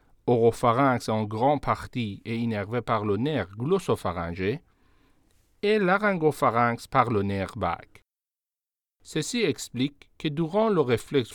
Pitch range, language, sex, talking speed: 105-155 Hz, French, male, 115 wpm